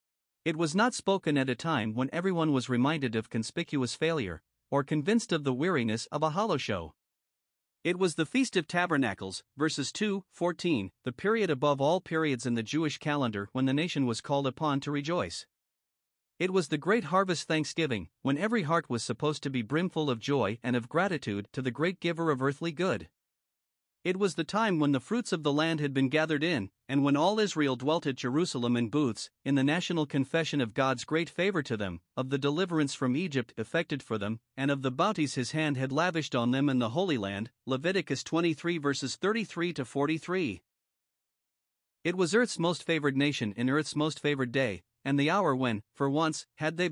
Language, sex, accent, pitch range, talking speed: English, male, American, 130-170 Hz, 195 wpm